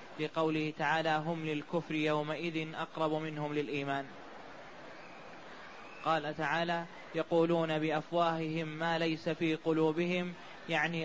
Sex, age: male, 20-39